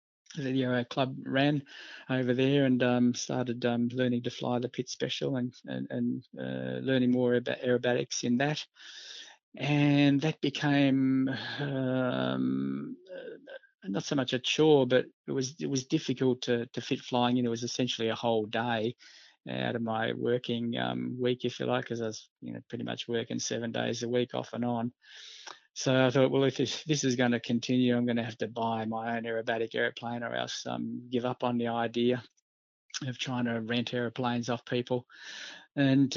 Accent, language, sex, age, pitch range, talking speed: Australian, English, male, 20-39, 115-130 Hz, 190 wpm